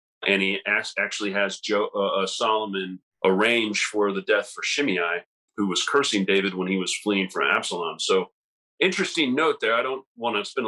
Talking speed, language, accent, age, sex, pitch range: 170 wpm, English, American, 40-59, male, 95-110 Hz